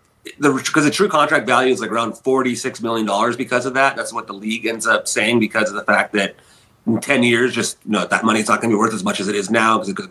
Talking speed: 285 wpm